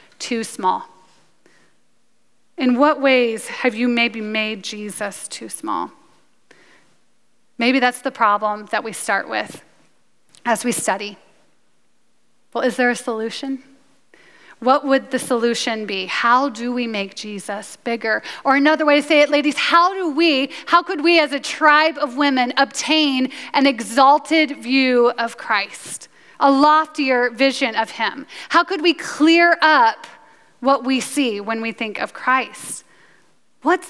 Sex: female